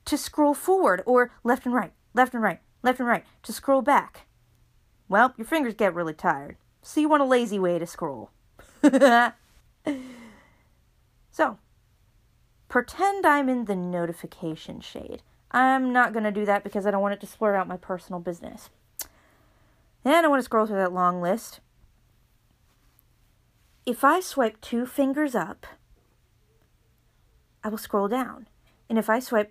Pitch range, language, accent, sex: 185-265 Hz, English, American, female